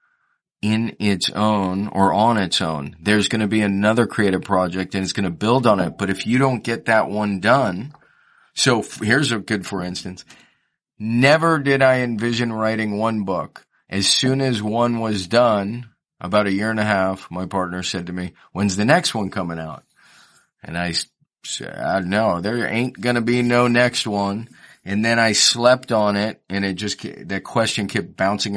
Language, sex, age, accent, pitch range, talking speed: English, male, 30-49, American, 95-115 Hz, 190 wpm